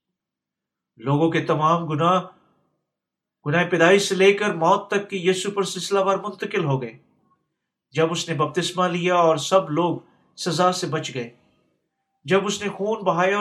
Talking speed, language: 140 wpm, Urdu